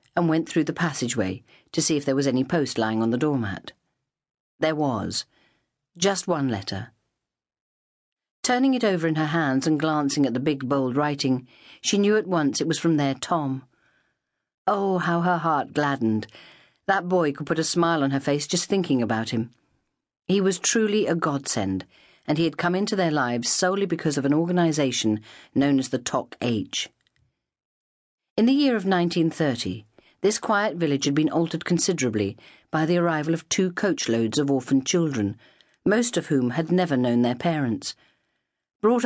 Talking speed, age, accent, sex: 175 wpm, 50-69, British, female